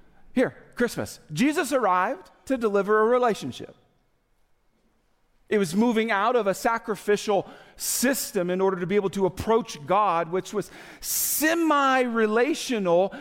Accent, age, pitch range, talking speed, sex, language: American, 40-59, 170-230 Hz, 125 wpm, male, English